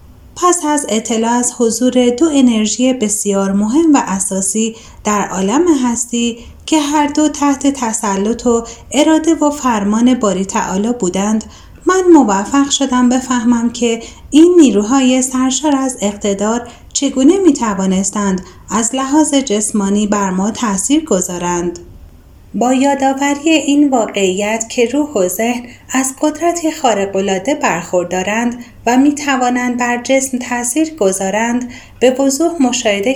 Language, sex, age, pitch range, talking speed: Persian, female, 30-49, 210-285 Hz, 125 wpm